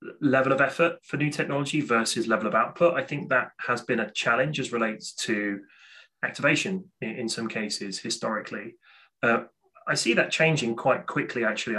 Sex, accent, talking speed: male, British, 170 wpm